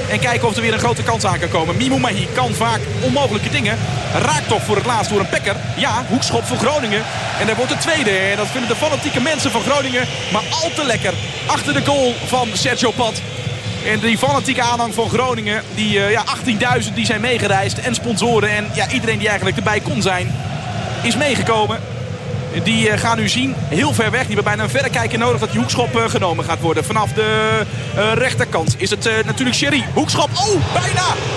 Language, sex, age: Dutch, male, 40-59